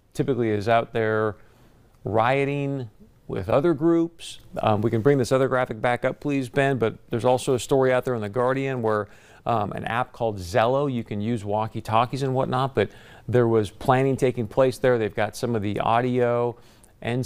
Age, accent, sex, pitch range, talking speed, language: 40-59, American, male, 110-130 Hz, 190 wpm, English